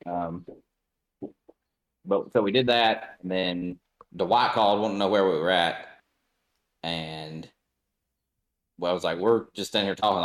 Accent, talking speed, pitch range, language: American, 165 wpm, 90-110 Hz, English